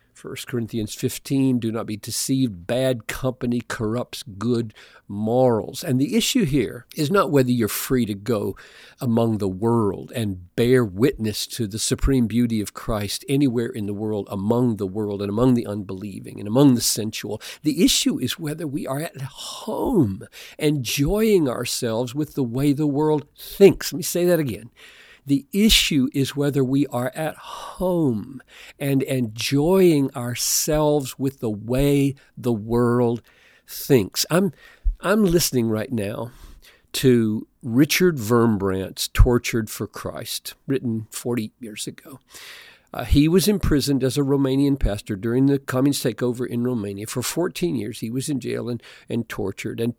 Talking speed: 155 wpm